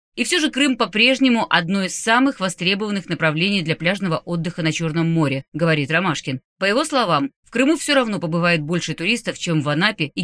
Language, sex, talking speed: Russian, female, 190 wpm